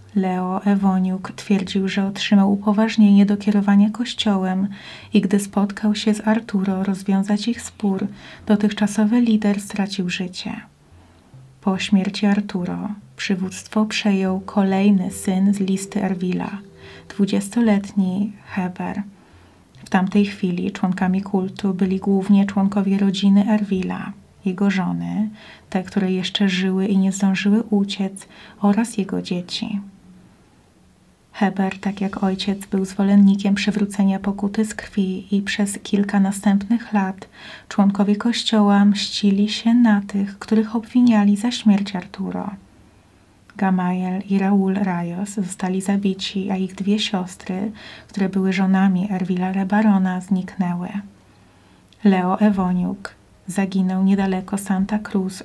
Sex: female